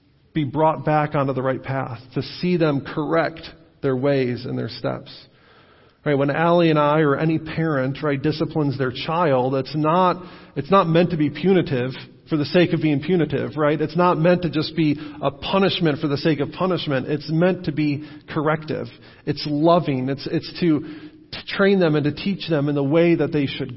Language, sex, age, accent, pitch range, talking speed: English, male, 40-59, American, 140-175 Hz, 200 wpm